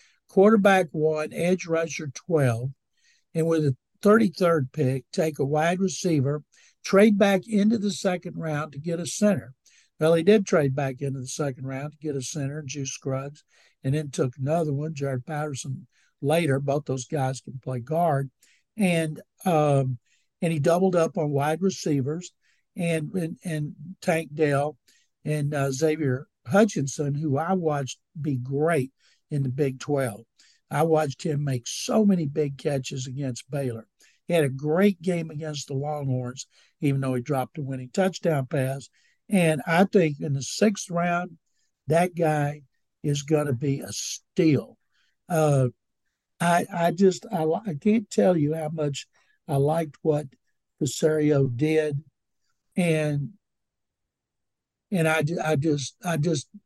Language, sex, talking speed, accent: English, male, 155 wpm, American